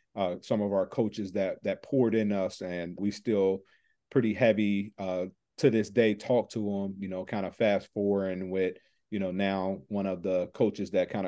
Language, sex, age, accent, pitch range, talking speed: English, male, 40-59, American, 95-115 Hz, 205 wpm